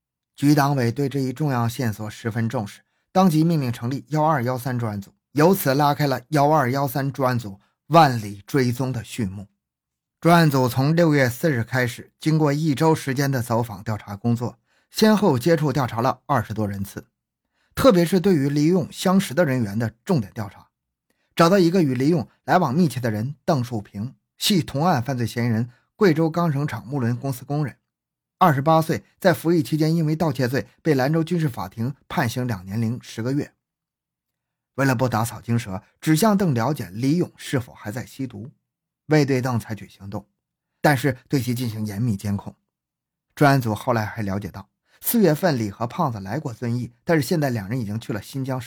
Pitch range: 115-155 Hz